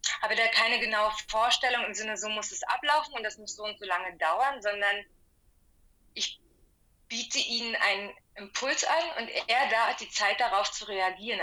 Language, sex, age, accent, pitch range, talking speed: German, female, 20-39, German, 185-235 Hz, 185 wpm